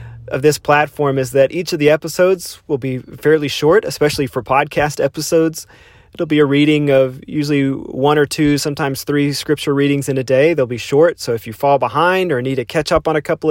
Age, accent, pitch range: 30-49, American, 125-150 Hz